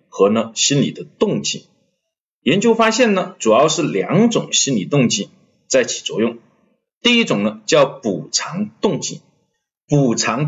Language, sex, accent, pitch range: Chinese, male, native, 150-230 Hz